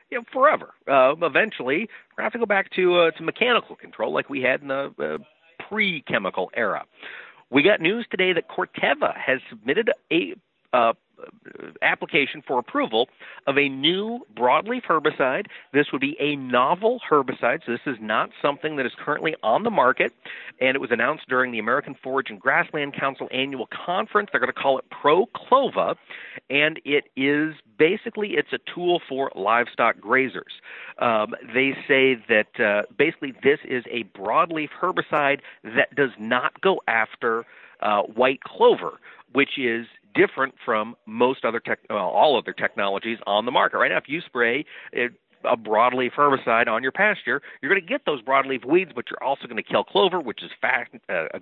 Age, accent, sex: 50-69, American, male